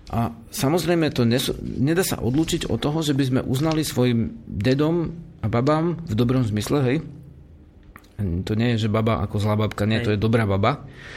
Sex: male